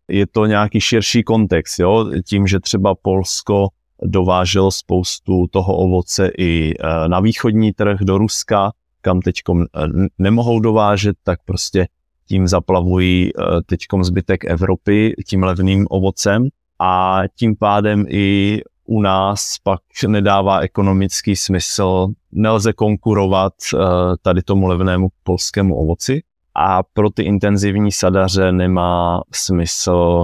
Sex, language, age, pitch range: male, Czech, 30-49, 90-105 Hz